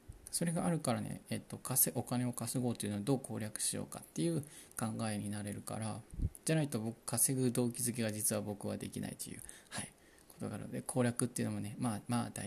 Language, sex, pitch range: Japanese, male, 110-140 Hz